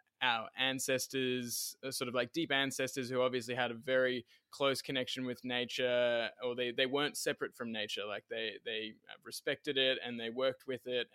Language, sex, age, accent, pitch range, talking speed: English, male, 20-39, Australian, 120-140 Hz, 180 wpm